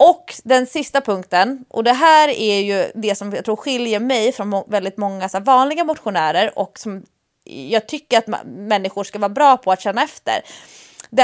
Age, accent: 20-39, Swedish